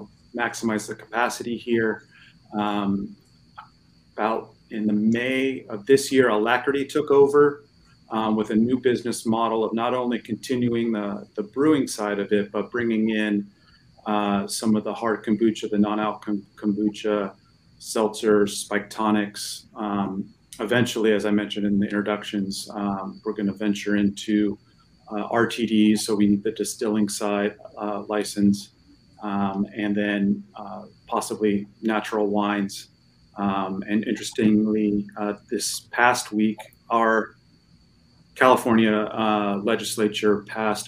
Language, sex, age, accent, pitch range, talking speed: English, male, 30-49, American, 105-115 Hz, 130 wpm